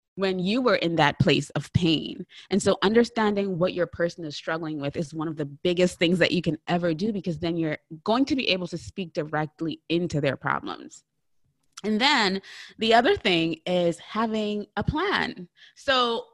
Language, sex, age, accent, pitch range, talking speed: English, female, 20-39, American, 160-210 Hz, 185 wpm